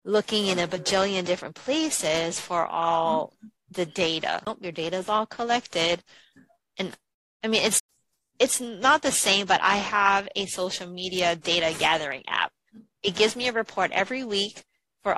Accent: American